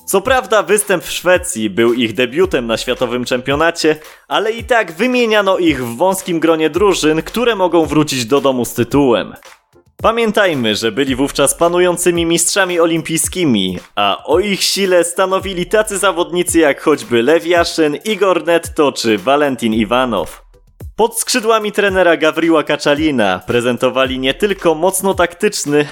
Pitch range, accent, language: 130-185 Hz, native, Polish